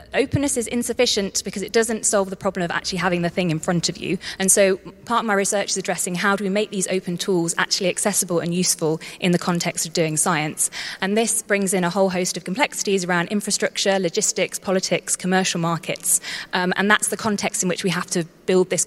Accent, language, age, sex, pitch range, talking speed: British, English, 20-39, female, 175-205 Hz, 225 wpm